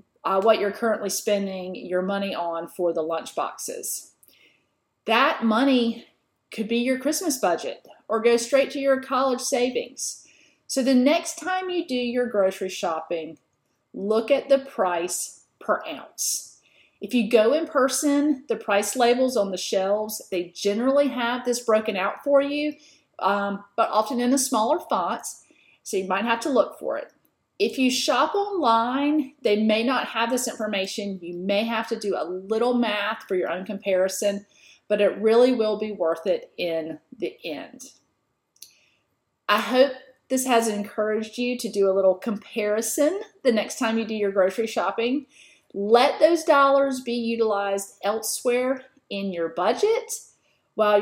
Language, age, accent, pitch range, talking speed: English, 40-59, American, 200-265 Hz, 160 wpm